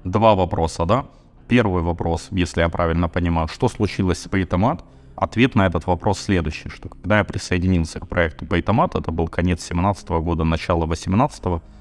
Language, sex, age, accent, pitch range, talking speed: Russian, male, 20-39, native, 85-95 Hz, 165 wpm